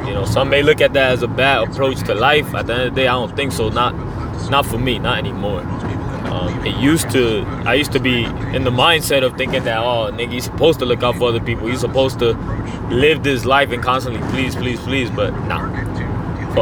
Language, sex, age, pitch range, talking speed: English, male, 20-39, 110-130 Hz, 240 wpm